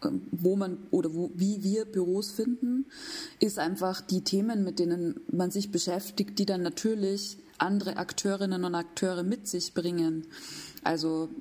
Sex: female